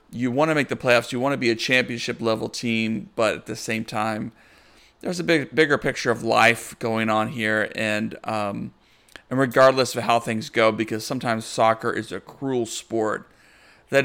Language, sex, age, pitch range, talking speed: English, male, 40-59, 115-145 Hz, 190 wpm